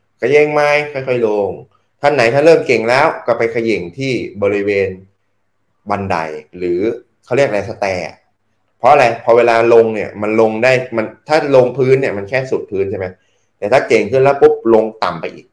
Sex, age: male, 20-39